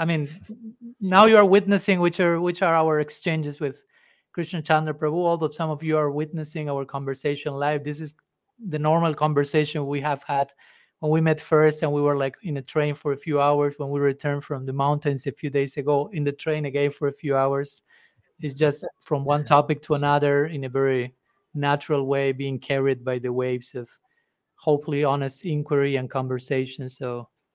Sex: male